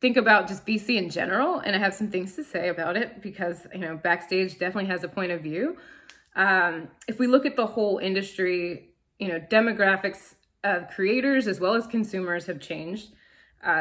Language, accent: English, American